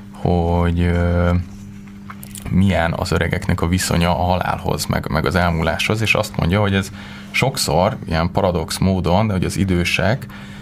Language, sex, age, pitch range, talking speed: Hungarian, male, 20-39, 90-100 Hz, 140 wpm